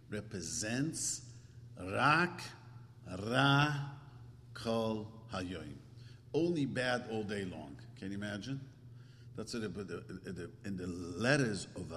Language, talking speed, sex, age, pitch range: English, 100 wpm, male, 50-69, 105-130 Hz